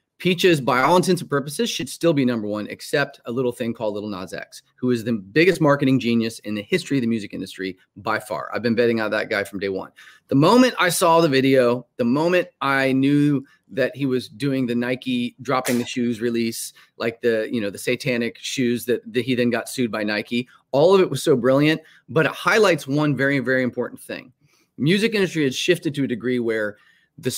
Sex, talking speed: male, 220 wpm